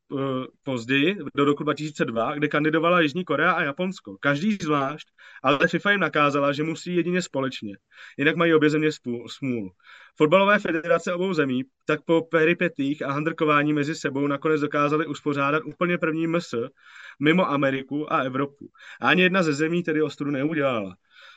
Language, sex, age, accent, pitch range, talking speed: Czech, male, 30-49, native, 130-160 Hz, 150 wpm